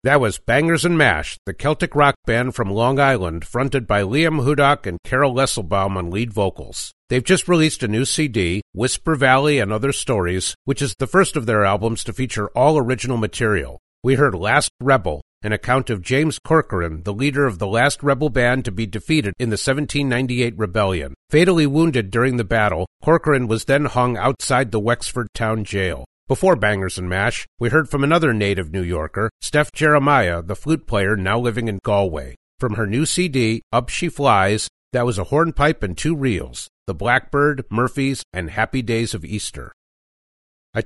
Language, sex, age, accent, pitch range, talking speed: English, male, 50-69, American, 105-140 Hz, 185 wpm